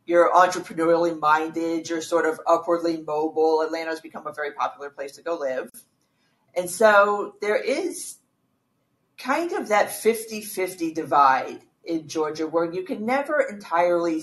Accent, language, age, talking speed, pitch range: American, English, 40-59, 145 wpm, 155-190 Hz